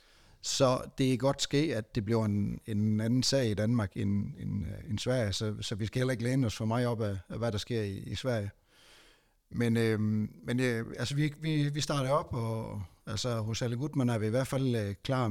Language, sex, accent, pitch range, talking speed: Danish, male, native, 105-130 Hz, 215 wpm